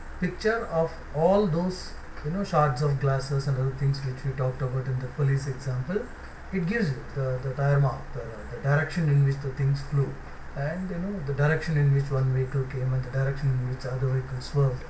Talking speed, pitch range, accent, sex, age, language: 215 wpm, 105-150 Hz, Indian, male, 30-49, English